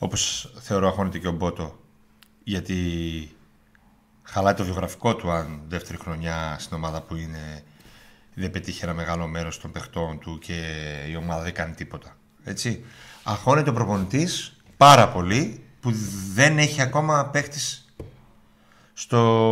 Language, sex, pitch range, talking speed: Greek, male, 95-135 Hz, 130 wpm